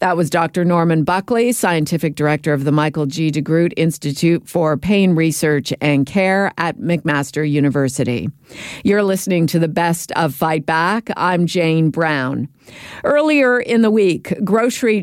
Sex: female